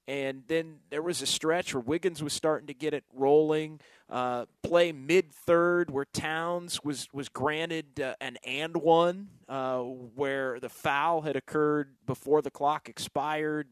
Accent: American